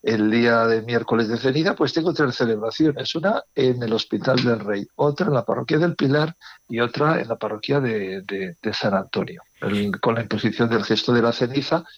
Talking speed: 205 wpm